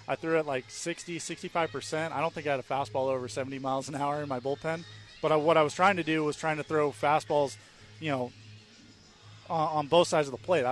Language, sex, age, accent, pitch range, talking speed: English, male, 30-49, American, 120-145 Hz, 240 wpm